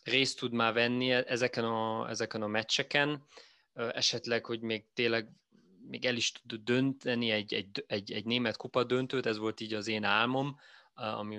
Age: 20-39